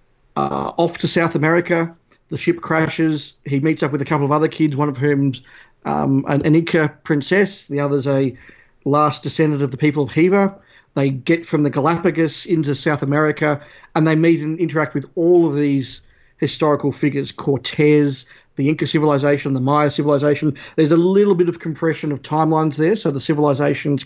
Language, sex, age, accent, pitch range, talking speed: English, male, 40-59, Australian, 140-165 Hz, 180 wpm